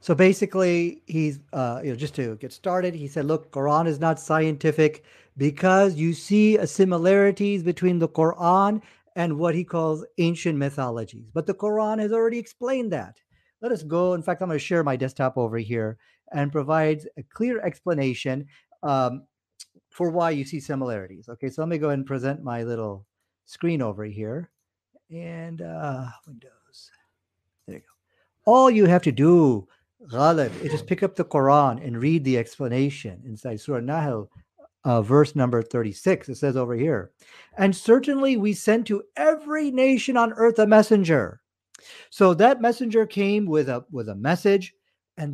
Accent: American